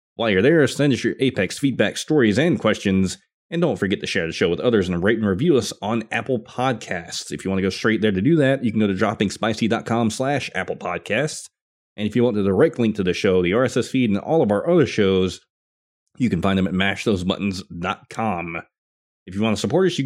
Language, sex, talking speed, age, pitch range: English, male, 235 wpm, 30-49, 95-125 Hz